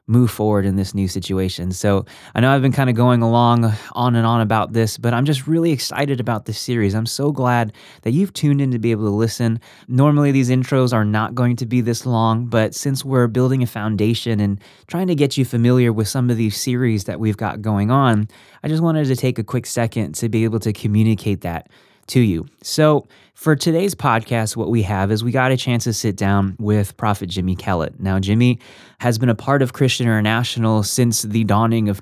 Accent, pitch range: American, 105-125 Hz